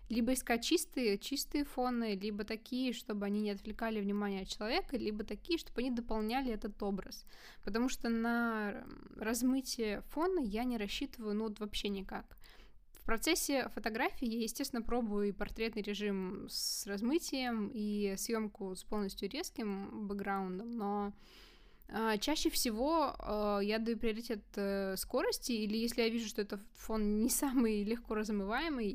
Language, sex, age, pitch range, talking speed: Russian, female, 20-39, 205-240 Hz, 140 wpm